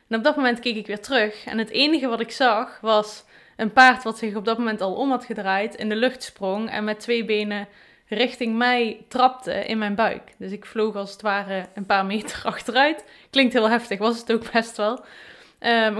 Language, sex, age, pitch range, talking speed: Dutch, female, 20-39, 200-235 Hz, 220 wpm